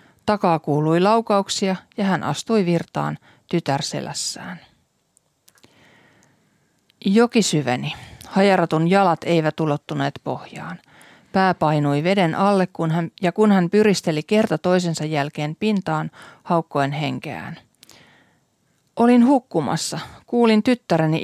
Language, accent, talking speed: Finnish, native, 100 wpm